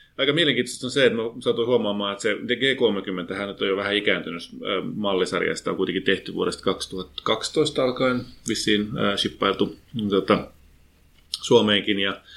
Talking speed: 125 wpm